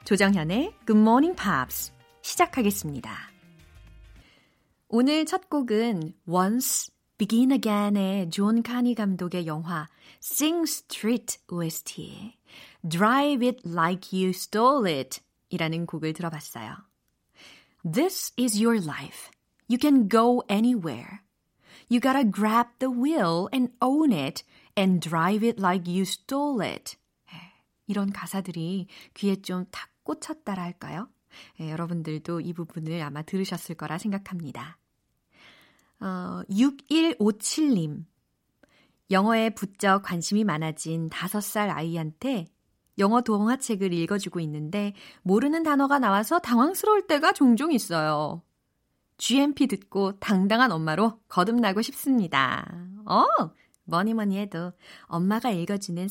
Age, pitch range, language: 30-49, 175-245 Hz, Korean